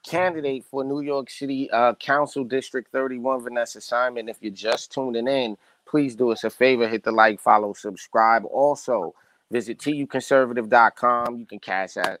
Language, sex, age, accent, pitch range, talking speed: English, male, 30-49, American, 130-165 Hz, 160 wpm